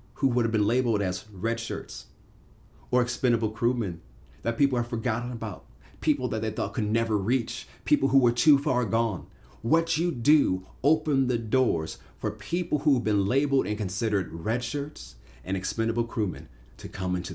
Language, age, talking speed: English, 40-59, 175 wpm